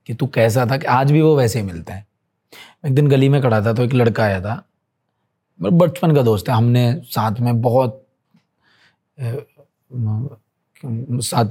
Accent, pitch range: native, 110-135 Hz